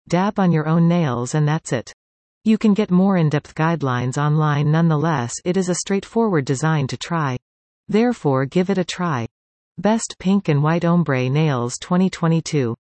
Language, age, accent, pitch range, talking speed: English, 40-59, American, 130-185 Hz, 160 wpm